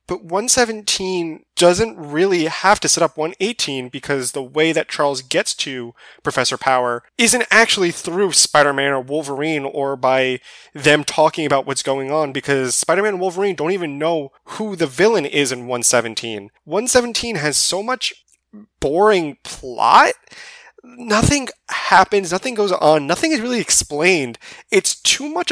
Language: English